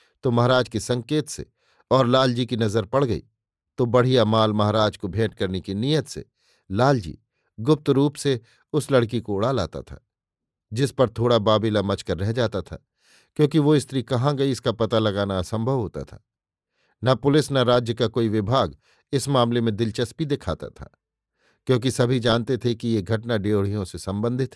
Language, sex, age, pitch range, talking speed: Hindi, male, 50-69, 110-130 Hz, 180 wpm